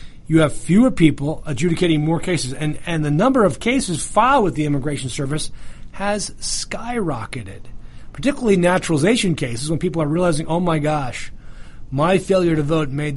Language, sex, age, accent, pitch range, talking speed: English, male, 40-59, American, 150-205 Hz, 160 wpm